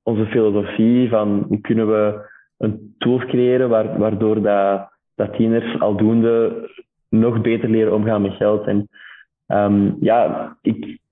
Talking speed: 125 wpm